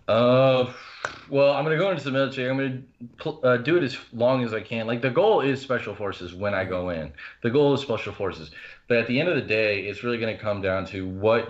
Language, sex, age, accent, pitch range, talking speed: English, male, 30-49, American, 100-125 Hz, 260 wpm